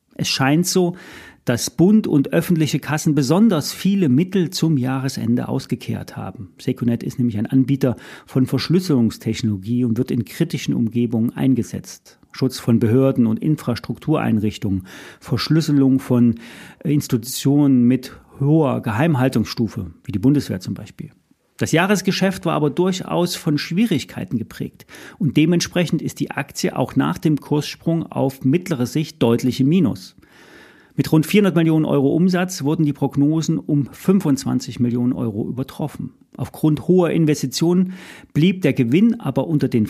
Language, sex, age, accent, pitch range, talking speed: German, male, 40-59, German, 125-165 Hz, 135 wpm